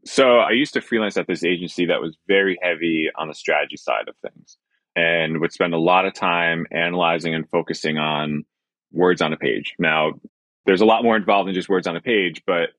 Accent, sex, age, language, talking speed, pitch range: American, male, 20-39, English, 215 wpm, 80-95 Hz